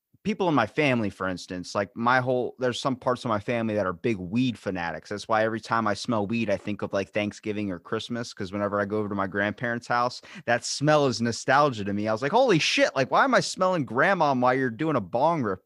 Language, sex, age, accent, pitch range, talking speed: English, male, 20-39, American, 100-130 Hz, 255 wpm